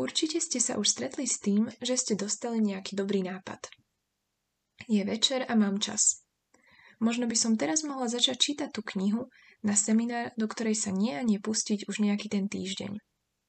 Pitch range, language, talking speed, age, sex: 200-240 Hz, Slovak, 180 wpm, 20-39, female